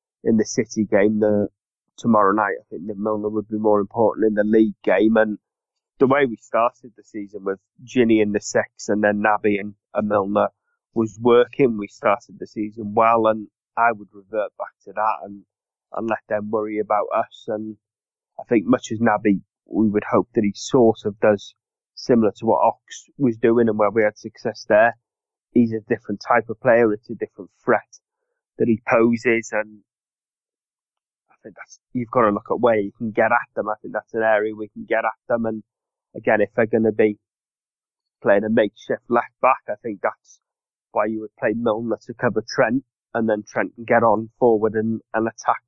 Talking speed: 200 wpm